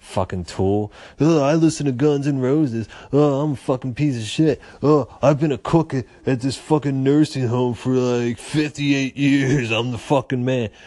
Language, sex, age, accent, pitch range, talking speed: English, male, 30-49, American, 95-130 Hz, 170 wpm